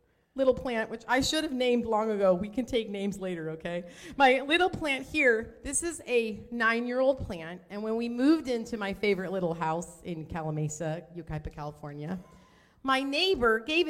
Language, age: English, 30-49